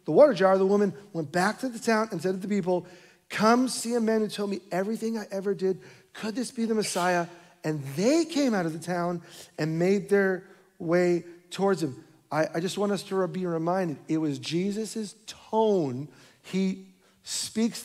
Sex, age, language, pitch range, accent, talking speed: male, 40-59, English, 165-210 Hz, American, 195 wpm